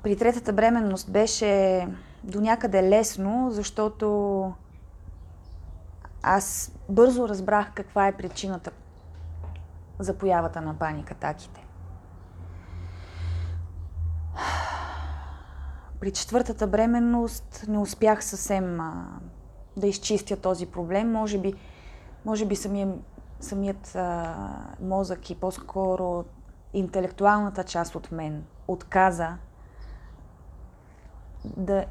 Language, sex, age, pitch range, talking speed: Bulgarian, female, 20-39, 155-210 Hz, 85 wpm